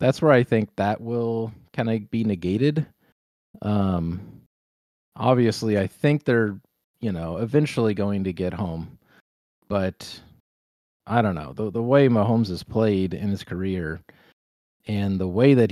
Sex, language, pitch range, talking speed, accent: male, English, 95-115 Hz, 145 wpm, American